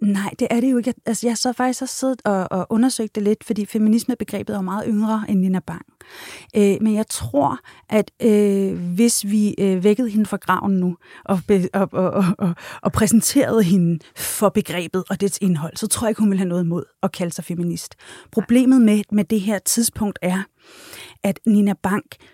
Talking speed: 205 wpm